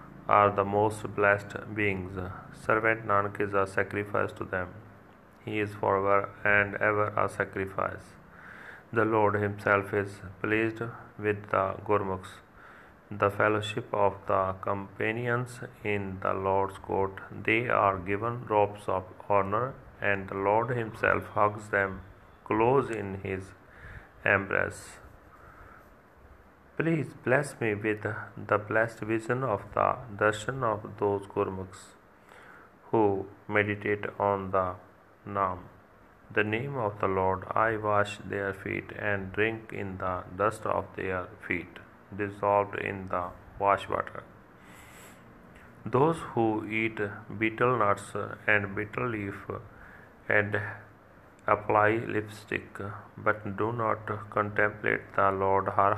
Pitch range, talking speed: 100-105 Hz, 120 wpm